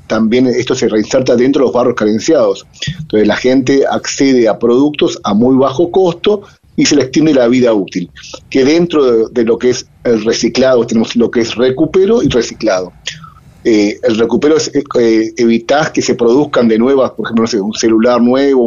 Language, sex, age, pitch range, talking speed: Spanish, male, 40-59, 110-135 Hz, 195 wpm